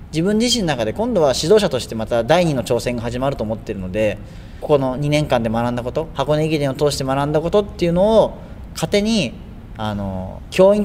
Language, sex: Japanese, male